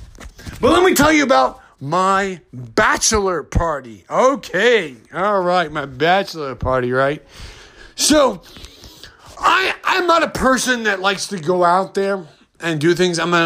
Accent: American